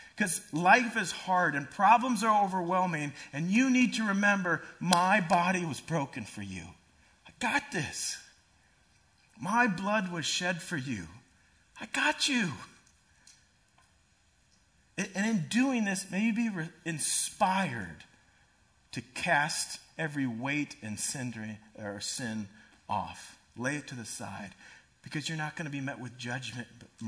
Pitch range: 105-150 Hz